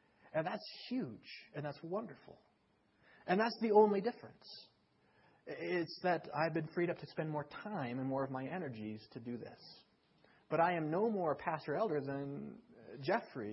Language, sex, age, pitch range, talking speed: English, male, 40-59, 130-175 Hz, 170 wpm